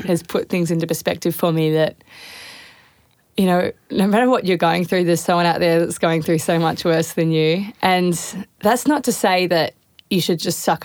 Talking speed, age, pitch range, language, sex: 210 wpm, 20-39, 170-205 Hz, English, female